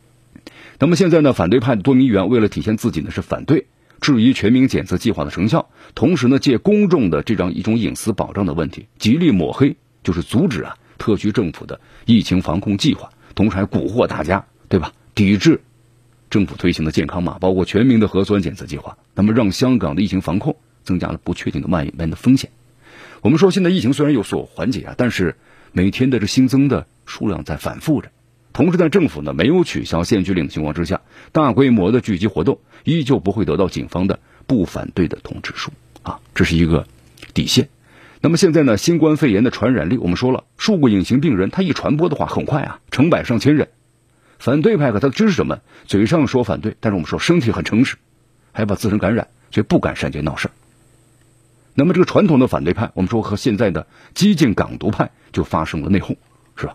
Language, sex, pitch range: Chinese, male, 95-135 Hz